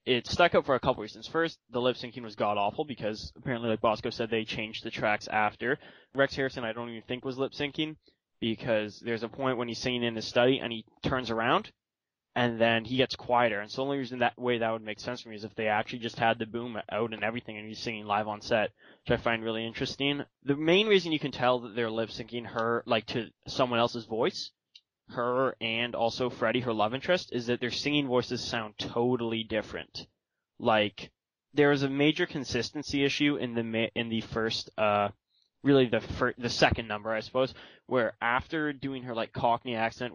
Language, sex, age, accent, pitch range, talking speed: English, male, 10-29, American, 115-130 Hz, 215 wpm